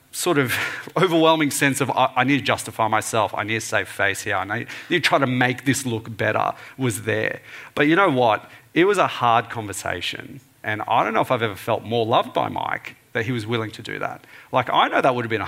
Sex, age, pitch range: male, 40-59, 110-140 Hz